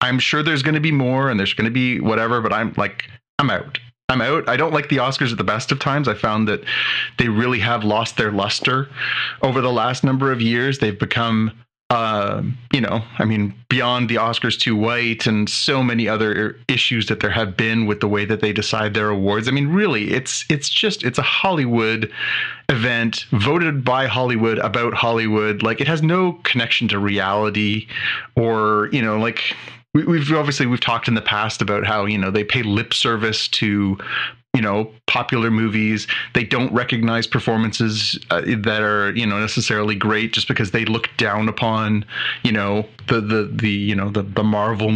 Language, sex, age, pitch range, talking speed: English, male, 30-49, 105-125 Hz, 195 wpm